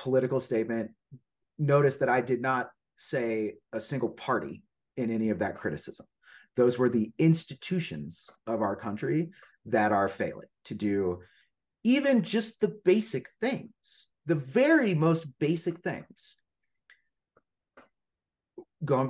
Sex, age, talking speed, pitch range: male, 30-49, 125 wpm, 110-145 Hz